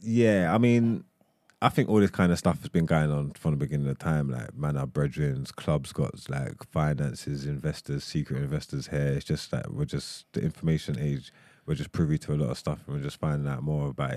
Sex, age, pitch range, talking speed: male, 20-39, 75-95 Hz, 235 wpm